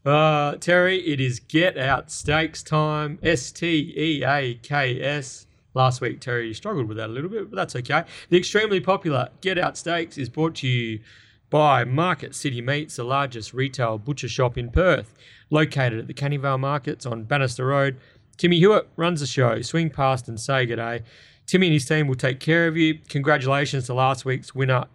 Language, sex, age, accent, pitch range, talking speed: English, male, 30-49, Australian, 120-155 Hz, 185 wpm